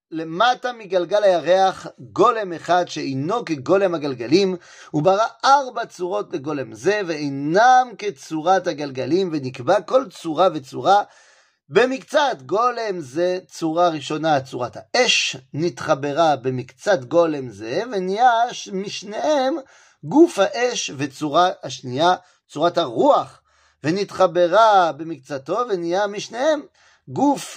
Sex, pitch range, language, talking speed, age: male, 150-205 Hz, French, 90 wpm, 30-49